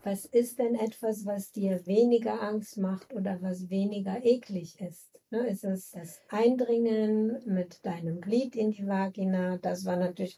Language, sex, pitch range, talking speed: German, female, 190-230 Hz, 160 wpm